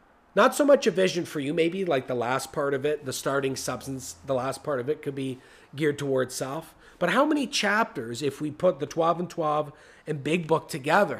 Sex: male